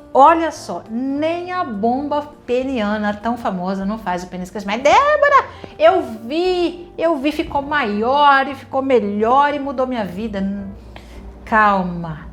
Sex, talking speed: female, 140 wpm